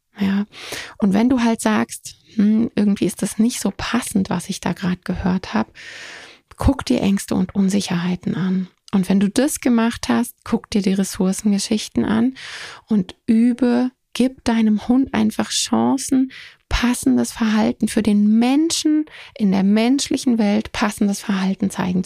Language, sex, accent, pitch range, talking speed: German, female, German, 195-240 Hz, 150 wpm